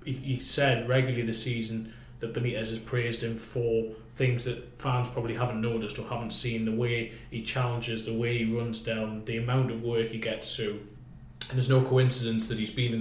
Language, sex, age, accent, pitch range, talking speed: English, male, 20-39, British, 110-125 Hz, 200 wpm